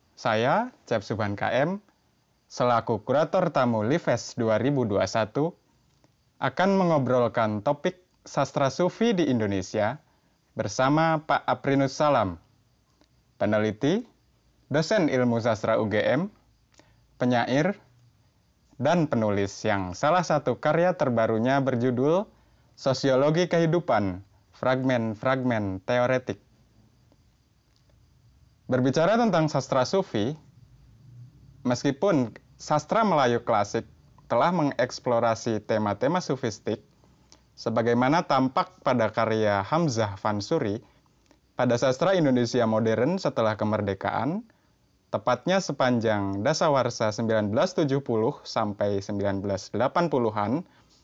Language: Indonesian